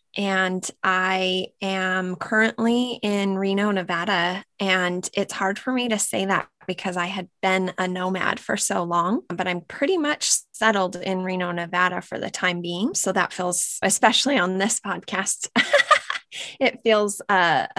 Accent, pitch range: American, 185-220 Hz